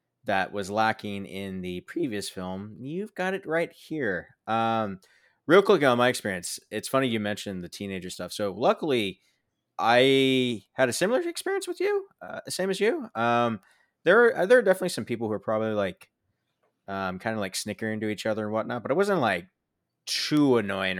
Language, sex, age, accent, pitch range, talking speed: English, male, 20-39, American, 95-125 Hz, 190 wpm